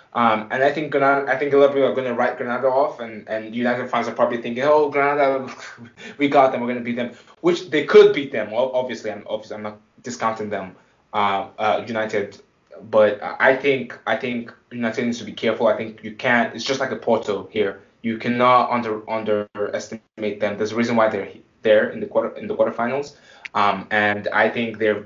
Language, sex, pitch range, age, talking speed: English, male, 110-140 Hz, 20-39, 220 wpm